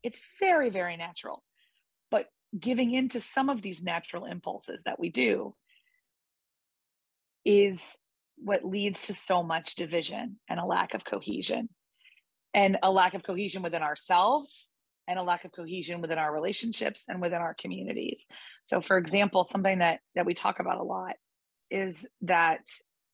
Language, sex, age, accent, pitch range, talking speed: English, female, 30-49, American, 170-210 Hz, 155 wpm